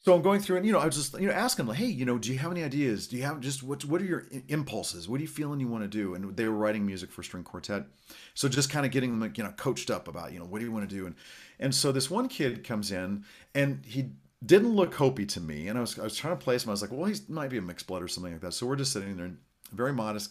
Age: 40-59